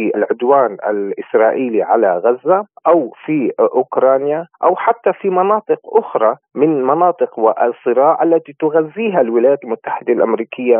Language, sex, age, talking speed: Arabic, male, 40-59, 115 wpm